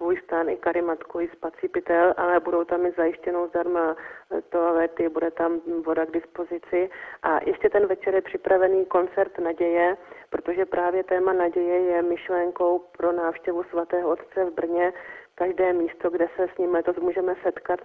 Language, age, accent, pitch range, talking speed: Czech, 40-59, native, 170-180 Hz, 155 wpm